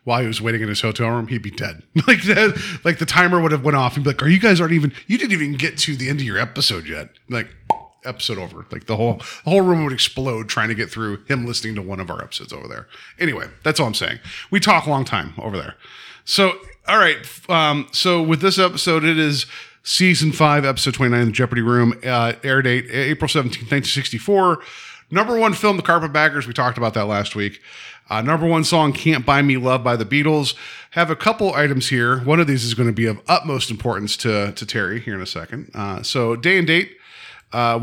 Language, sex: English, male